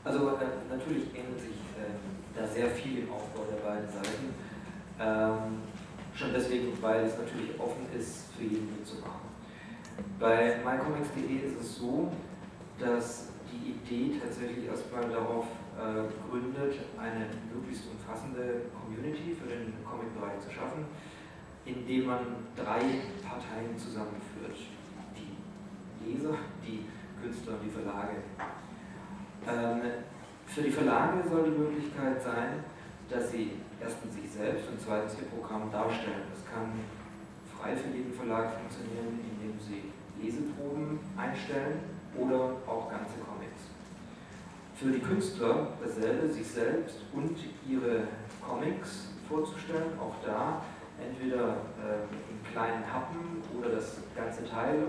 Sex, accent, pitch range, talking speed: male, German, 110-130 Hz, 120 wpm